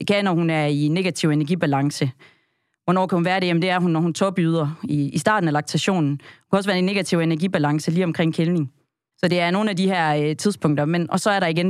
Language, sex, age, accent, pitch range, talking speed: Danish, female, 30-49, native, 150-190 Hz, 250 wpm